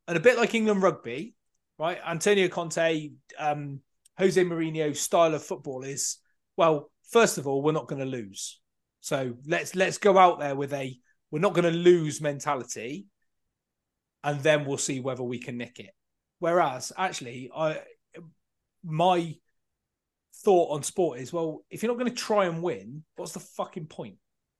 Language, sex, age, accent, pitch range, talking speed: English, male, 30-49, British, 145-185 Hz, 170 wpm